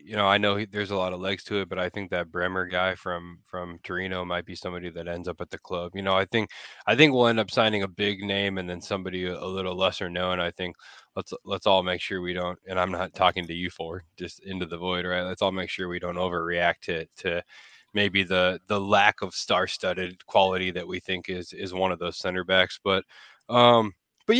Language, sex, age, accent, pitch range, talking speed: English, male, 20-39, American, 90-100 Hz, 245 wpm